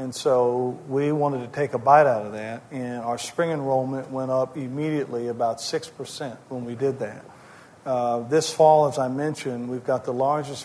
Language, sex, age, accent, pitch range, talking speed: English, male, 50-69, American, 125-145 Hz, 190 wpm